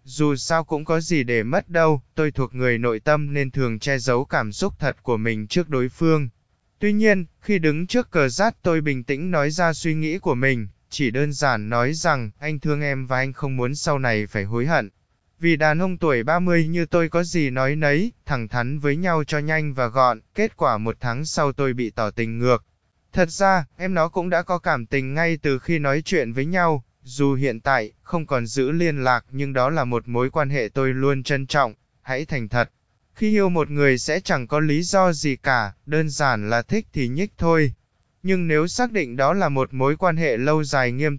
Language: Vietnamese